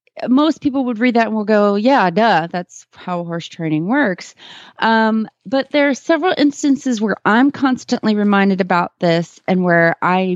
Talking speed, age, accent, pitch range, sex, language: 175 wpm, 30-49, American, 165-230 Hz, female, English